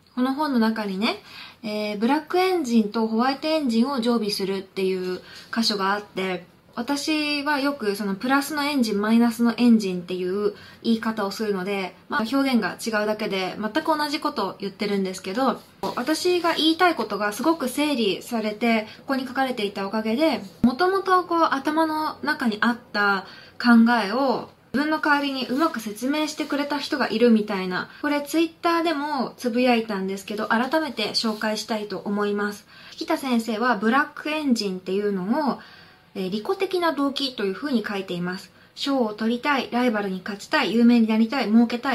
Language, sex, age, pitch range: Japanese, female, 20-39, 205-285 Hz